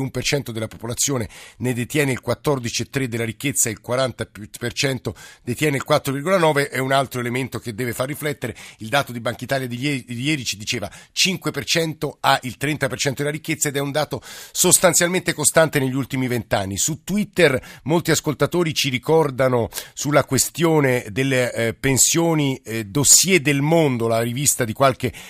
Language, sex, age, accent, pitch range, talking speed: Italian, male, 50-69, native, 120-150 Hz, 150 wpm